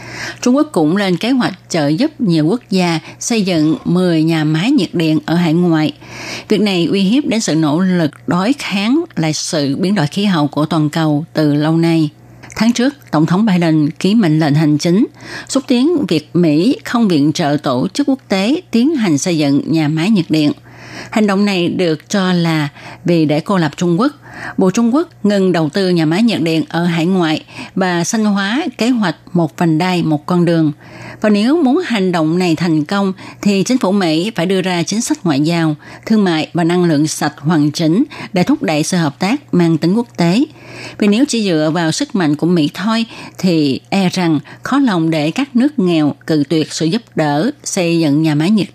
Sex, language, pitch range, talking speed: female, Vietnamese, 155-210 Hz, 215 wpm